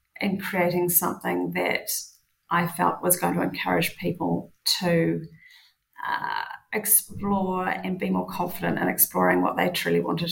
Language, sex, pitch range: English, female, 160-190 Hz